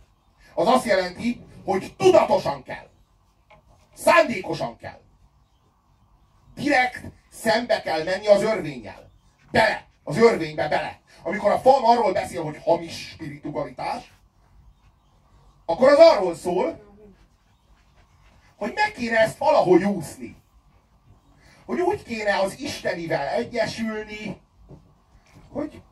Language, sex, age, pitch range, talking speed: Hungarian, male, 40-59, 145-235 Hz, 100 wpm